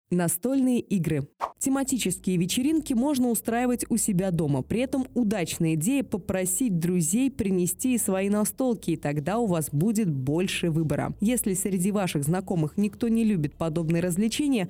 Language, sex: Russian, female